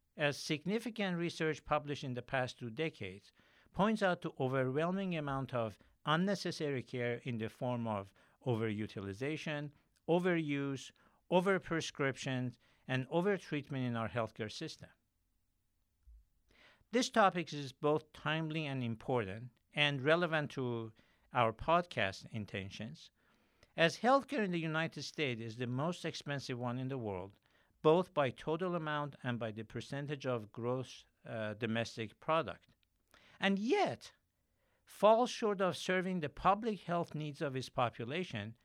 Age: 60-79